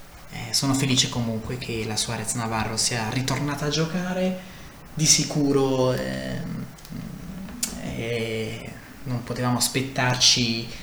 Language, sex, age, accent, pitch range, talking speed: Italian, male, 20-39, native, 110-140 Hz, 100 wpm